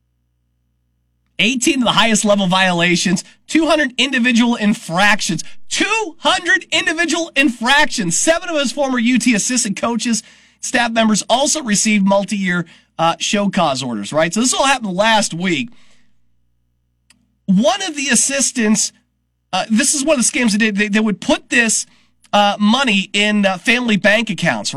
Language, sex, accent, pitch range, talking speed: English, male, American, 175-245 Hz, 145 wpm